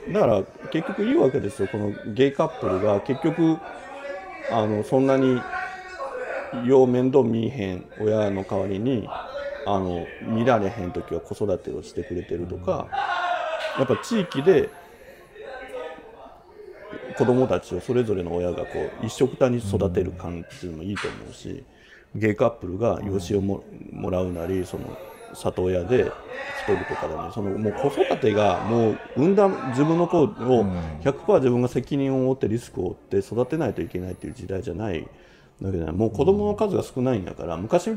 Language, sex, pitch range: Japanese, male, 95-160 Hz